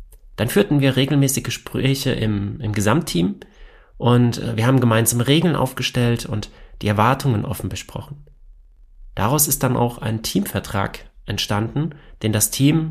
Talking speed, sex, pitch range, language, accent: 135 wpm, male, 105-135 Hz, German, German